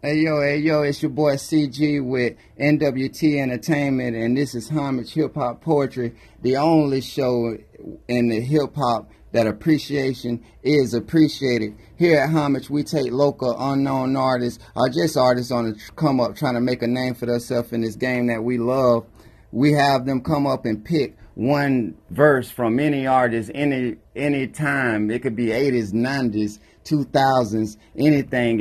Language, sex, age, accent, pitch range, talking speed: English, male, 30-49, American, 115-140 Hz, 165 wpm